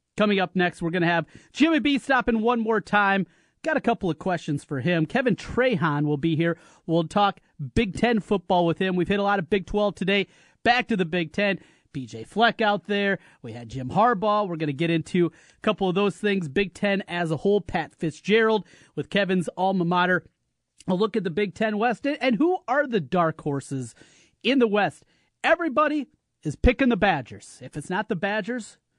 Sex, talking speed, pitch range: male, 205 wpm, 165-210 Hz